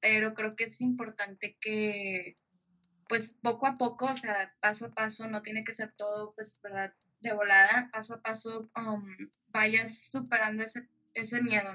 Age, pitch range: 10-29, 195-220 Hz